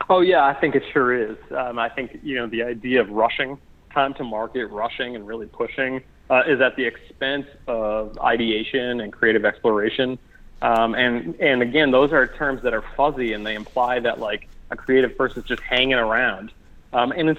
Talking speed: 200 wpm